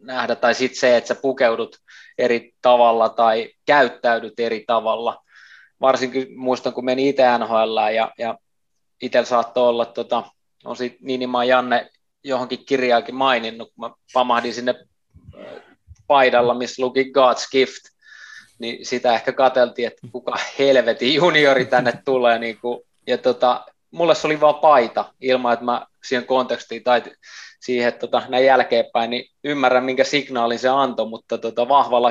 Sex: male